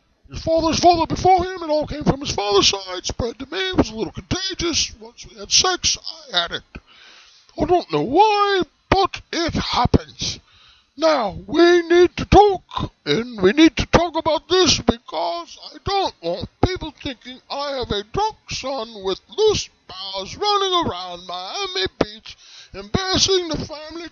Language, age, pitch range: English, 20-39, 275-380 Hz